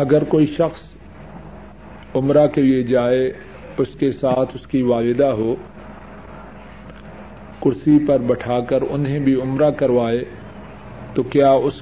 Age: 50-69